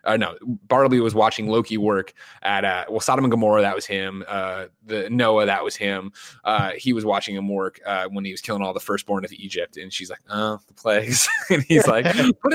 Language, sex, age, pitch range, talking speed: English, male, 20-39, 100-125 Hz, 230 wpm